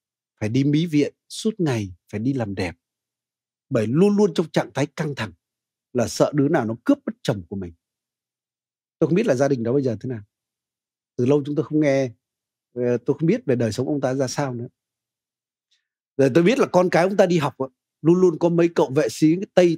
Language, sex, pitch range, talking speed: Vietnamese, male, 120-165 Hz, 225 wpm